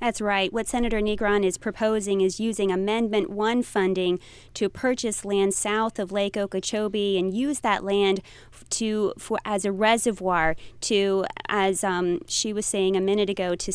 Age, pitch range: 20-39, 185-215 Hz